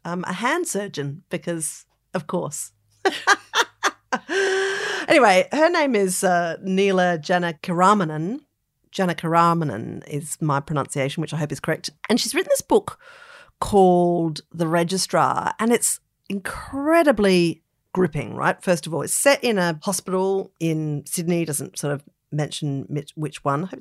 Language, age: English, 40-59